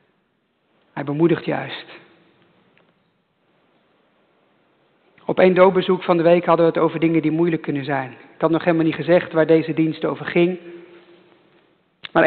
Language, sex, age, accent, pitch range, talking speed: English, male, 50-69, Dutch, 170-245 Hz, 145 wpm